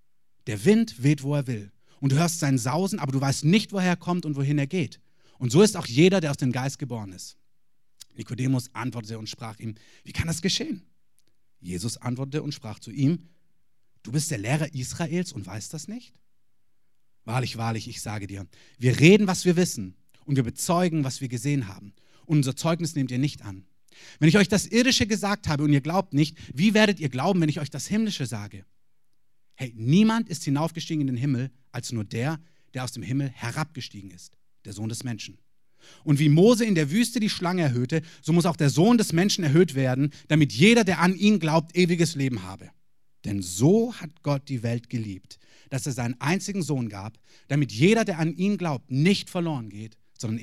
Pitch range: 115-165 Hz